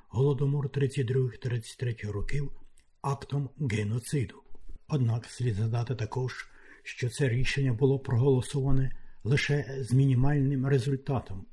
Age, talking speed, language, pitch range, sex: 60-79, 95 wpm, Ukrainian, 120-140 Hz, male